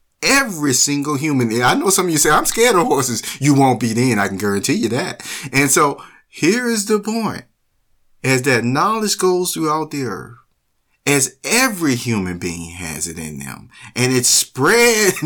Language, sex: English, male